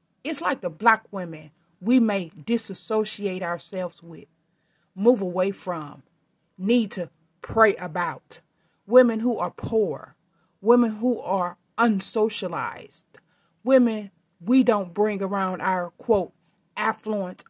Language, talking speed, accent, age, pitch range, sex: English, 115 wpm, American, 30-49, 170-220 Hz, female